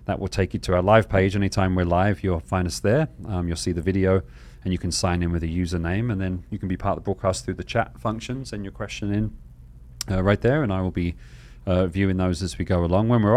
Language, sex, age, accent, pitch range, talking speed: English, male, 30-49, British, 85-105 Hz, 275 wpm